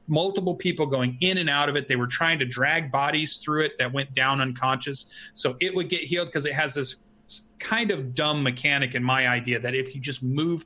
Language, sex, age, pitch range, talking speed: English, male, 30-49, 130-165 Hz, 230 wpm